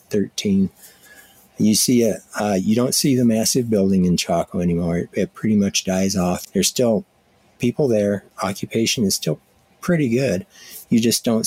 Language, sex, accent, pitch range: English, male, American, 90-115 Hz